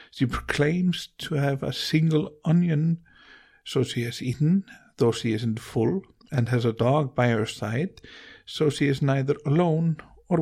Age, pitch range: 50-69, 120-155 Hz